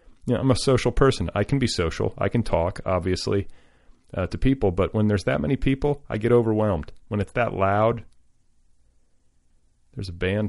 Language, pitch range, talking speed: English, 85-105 Hz, 195 wpm